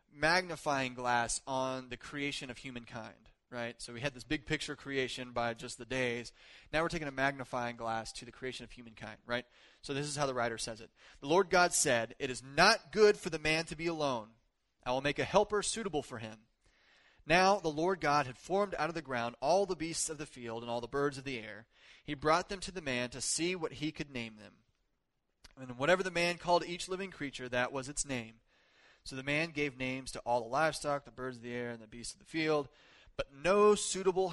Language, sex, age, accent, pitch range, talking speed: English, male, 30-49, American, 120-155 Hz, 230 wpm